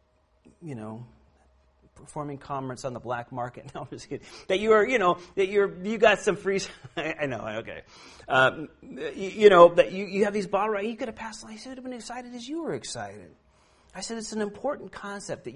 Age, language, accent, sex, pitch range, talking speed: 40-59, Finnish, American, male, 125-195 Hz, 225 wpm